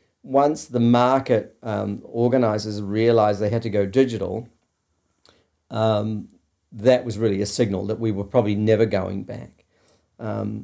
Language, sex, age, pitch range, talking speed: English, male, 50-69, 100-125 Hz, 140 wpm